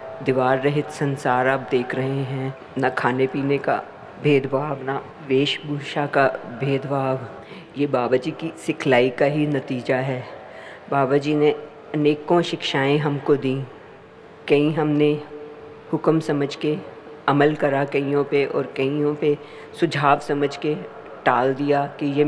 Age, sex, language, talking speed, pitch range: 50-69, female, Hindi, 135 wpm, 140-150 Hz